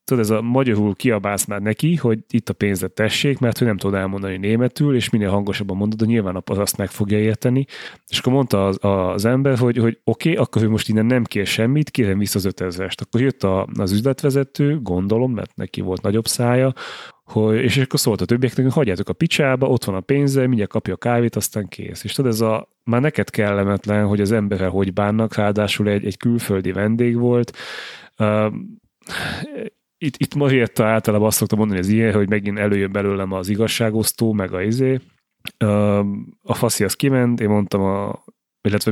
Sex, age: male, 30-49